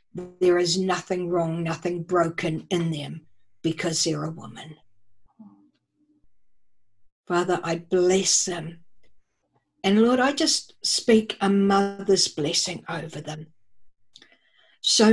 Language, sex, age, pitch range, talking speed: English, female, 60-79, 175-215 Hz, 105 wpm